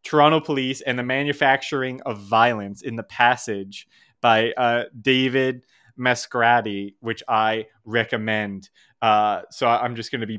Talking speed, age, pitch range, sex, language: 140 wpm, 20-39, 120-160 Hz, male, English